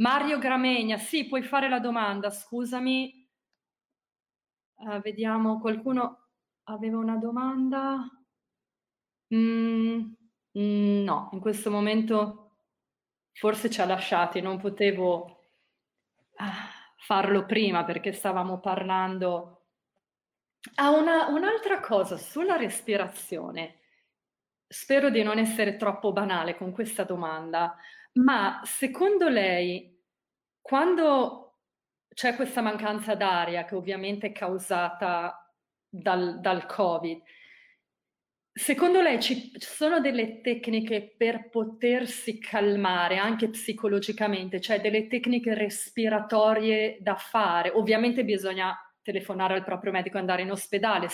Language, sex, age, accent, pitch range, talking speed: Italian, female, 30-49, native, 190-240 Hz, 100 wpm